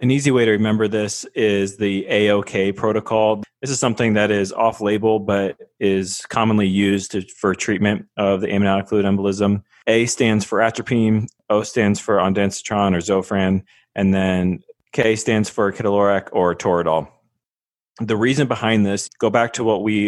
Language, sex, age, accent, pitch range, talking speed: English, male, 20-39, American, 95-110 Hz, 165 wpm